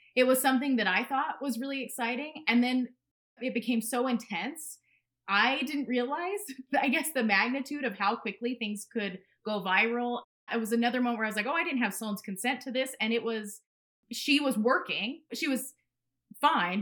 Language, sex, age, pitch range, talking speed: English, female, 20-39, 200-250 Hz, 195 wpm